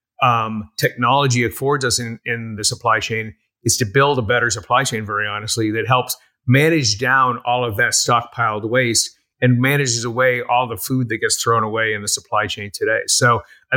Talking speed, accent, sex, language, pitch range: 190 wpm, American, male, English, 115-130 Hz